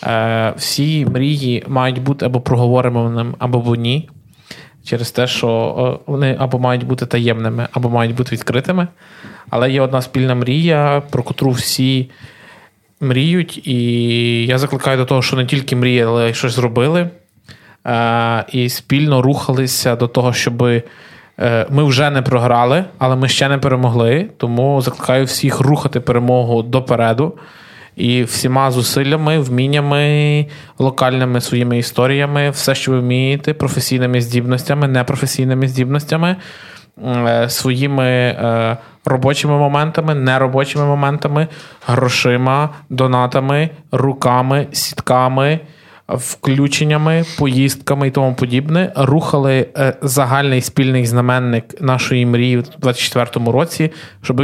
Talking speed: 110 wpm